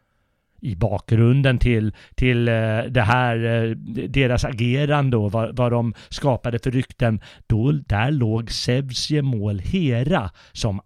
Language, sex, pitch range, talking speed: Swedish, male, 110-150 Hz, 115 wpm